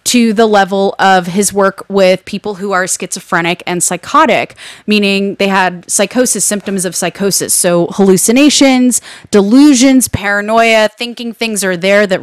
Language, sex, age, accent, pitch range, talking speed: English, female, 20-39, American, 190-240 Hz, 140 wpm